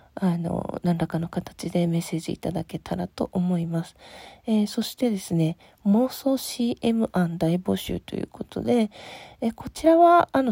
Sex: female